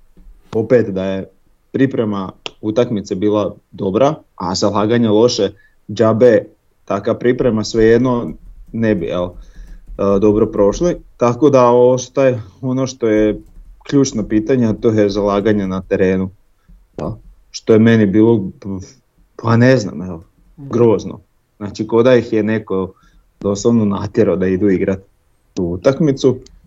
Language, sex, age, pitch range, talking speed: Croatian, male, 30-49, 100-120 Hz, 120 wpm